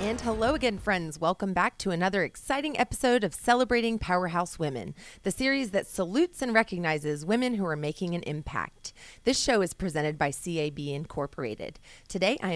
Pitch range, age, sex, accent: 160-215 Hz, 30-49, female, American